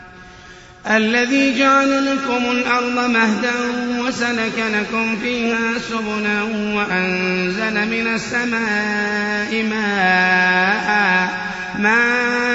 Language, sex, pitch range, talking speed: Arabic, male, 205-235 Hz, 65 wpm